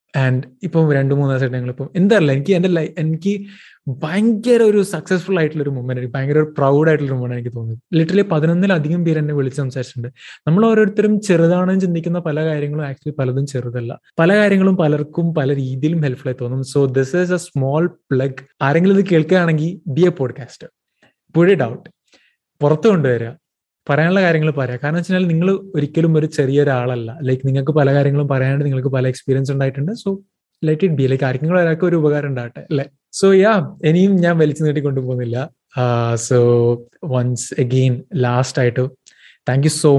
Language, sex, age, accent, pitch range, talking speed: Malayalam, male, 20-39, native, 130-170 Hz, 160 wpm